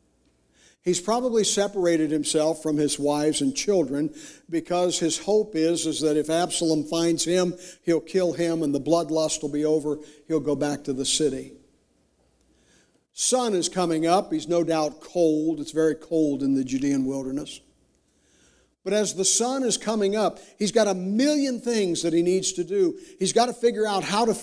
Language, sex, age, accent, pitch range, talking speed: English, male, 60-79, American, 150-220 Hz, 180 wpm